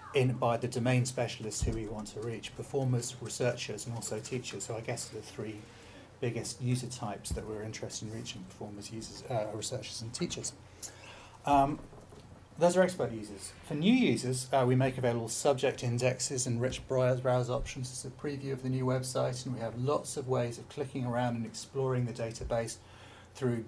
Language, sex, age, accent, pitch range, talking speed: English, male, 30-49, British, 110-130 Hz, 185 wpm